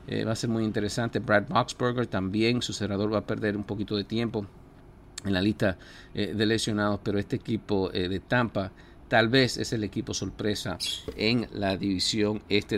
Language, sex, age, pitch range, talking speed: English, male, 50-69, 95-110 Hz, 190 wpm